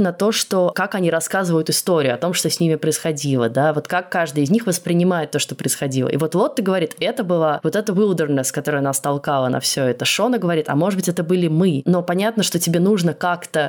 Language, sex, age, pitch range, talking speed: Russian, female, 20-39, 135-180 Hz, 230 wpm